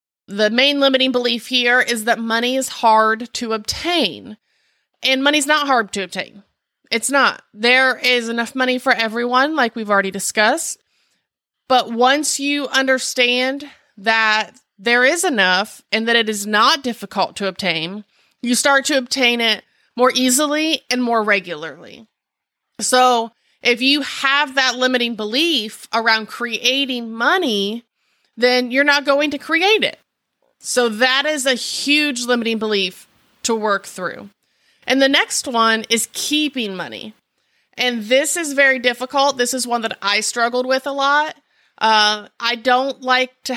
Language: English